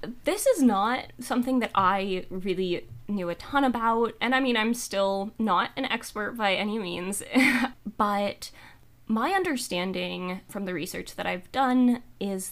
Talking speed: 155 wpm